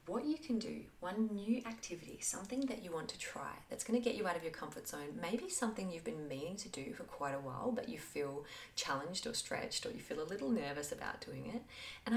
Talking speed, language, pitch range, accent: 240 wpm, English, 160-245 Hz, Australian